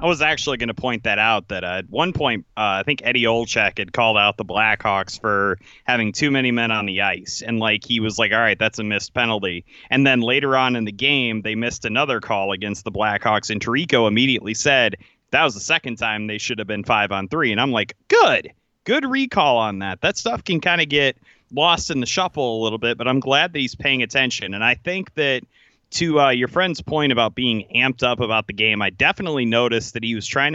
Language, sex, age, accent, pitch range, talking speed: English, male, 30-49, American, 110-140 Hz, 240 wpm